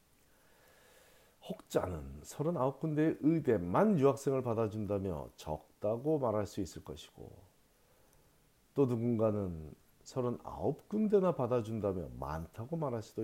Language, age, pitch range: Korean, 40-59, 90-135 Hz